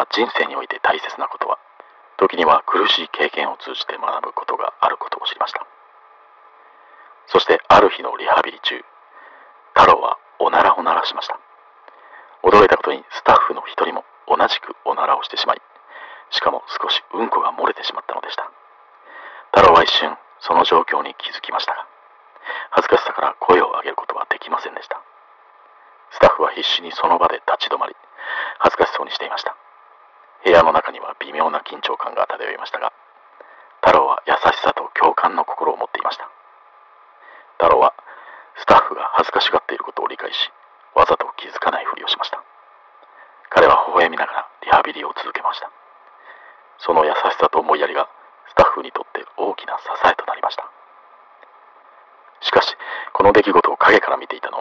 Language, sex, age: Japanese, male, 40-59